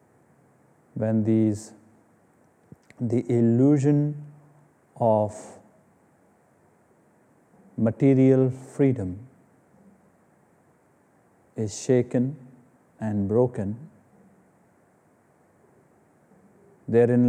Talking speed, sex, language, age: 40 wpm, male, English, 50-69